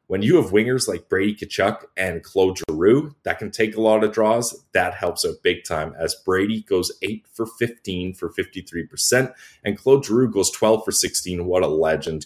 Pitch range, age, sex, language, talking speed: 90-135 Hz, 30-49, male, English, 200 wpm